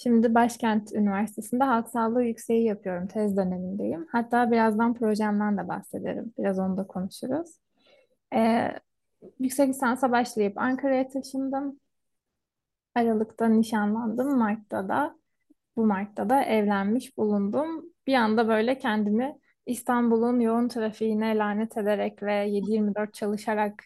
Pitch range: 210-260 Hz